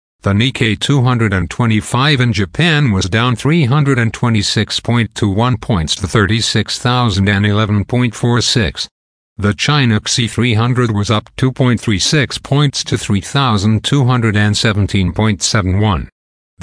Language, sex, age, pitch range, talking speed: English, male, 60-79, 100-125 Hz, 75 wpm